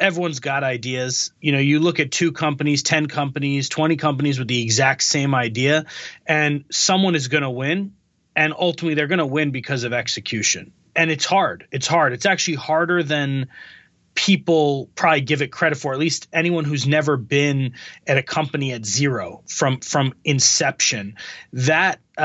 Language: English